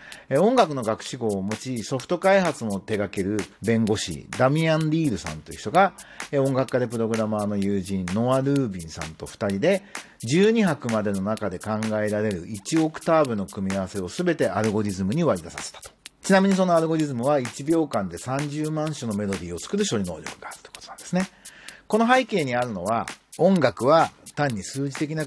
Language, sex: Japanese, male